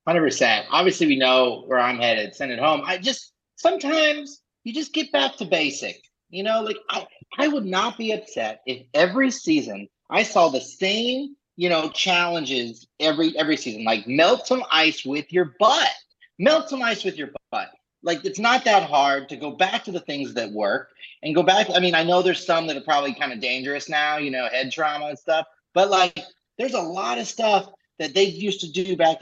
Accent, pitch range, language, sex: American, 140-200 Hz, English, male